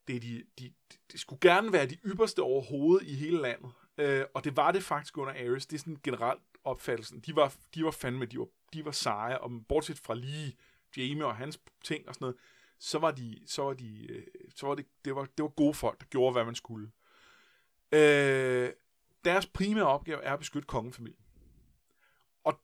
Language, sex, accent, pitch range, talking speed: Danish, male, native, 130-180 Hz, 180 wpm